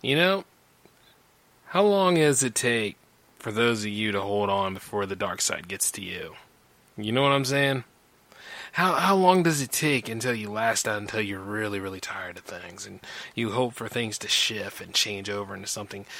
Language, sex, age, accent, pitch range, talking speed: English, male, 20-39, American, 100-130 Hz, 205 wpm